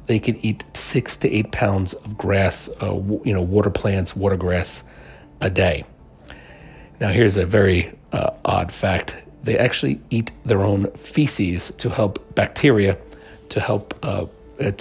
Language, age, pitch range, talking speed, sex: English, 40-59, 95-110 Hz, 150 wpm, male